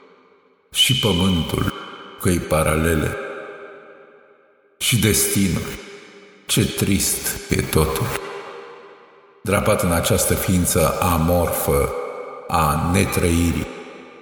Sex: male